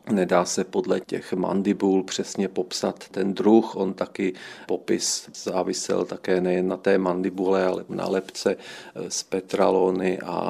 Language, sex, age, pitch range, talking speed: Czech, male, 40-59, 95-105 Hz, 135 wpm